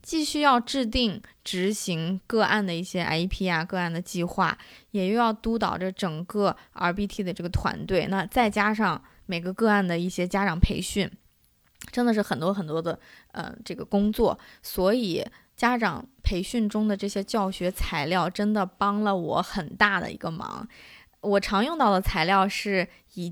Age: 20-39